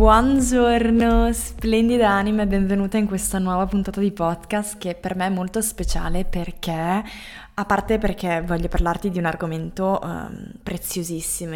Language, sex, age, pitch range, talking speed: Italian, female, 20-39, 180-205 Hz, 145 wpm